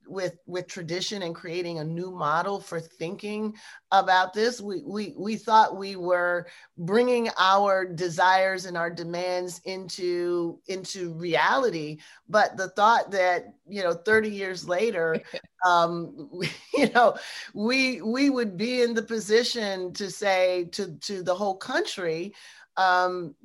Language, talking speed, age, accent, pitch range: English, 140 wpm, 30-49, American, 180-225 Hz